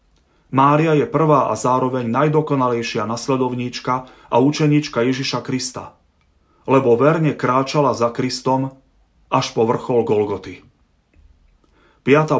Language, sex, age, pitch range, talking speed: Slovak, male, 30-49, 115-145 Hz, 100 wpm